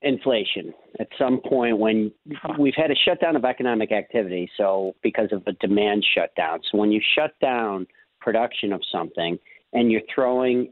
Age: 50-69